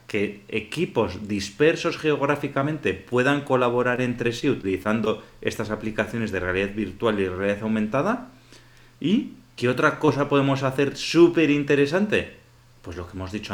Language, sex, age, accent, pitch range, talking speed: Spanish, male, 30-49, Spanish, 105-140 Hz, 135 wpm